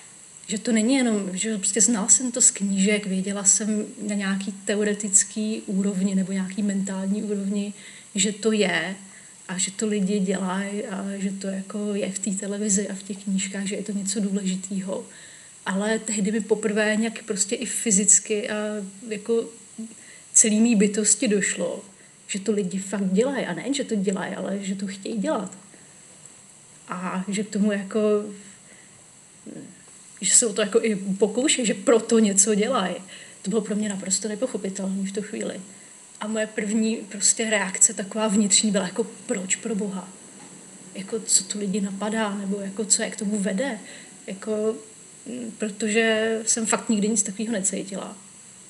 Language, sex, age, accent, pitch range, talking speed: Czech, female, 30-49, native, 195-220 Hz, 160 wpm